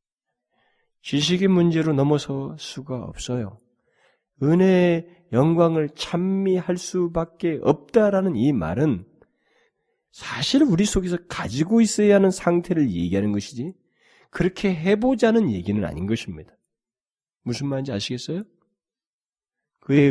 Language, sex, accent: Korean, male, native